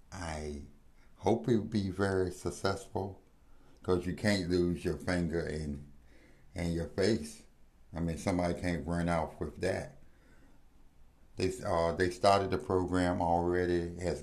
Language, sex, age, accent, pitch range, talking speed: English, male, 60-79, American, 75-90 Hz, 145 wpm